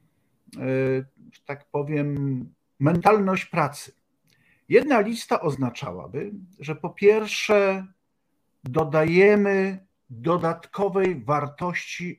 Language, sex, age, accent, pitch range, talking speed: Polish, male, 50-69, native, 135-190 Hz, 65 wpm